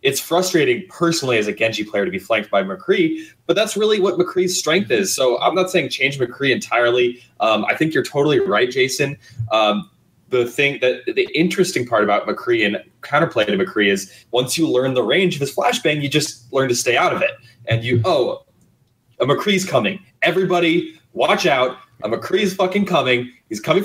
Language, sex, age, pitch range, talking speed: English, male, 20-39, 120-170 Hz, 200 wpm